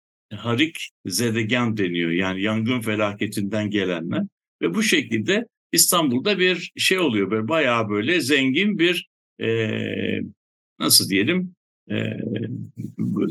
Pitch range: 105-155 Hz